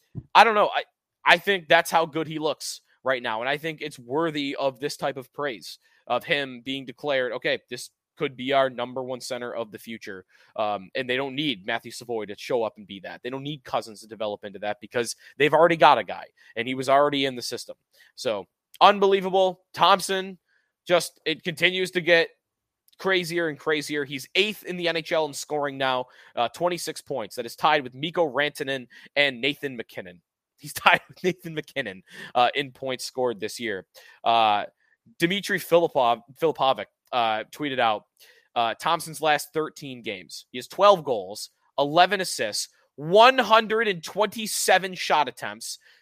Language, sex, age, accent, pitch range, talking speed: English, male, 20-39, American, 125-175 Hz, 175 wpm